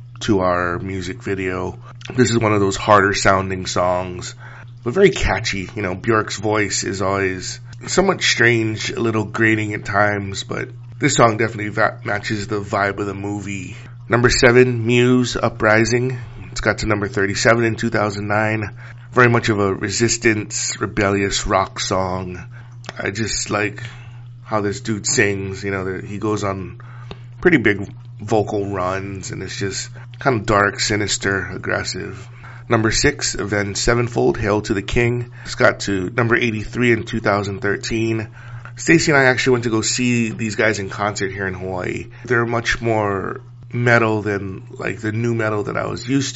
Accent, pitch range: American, 100-120 Hz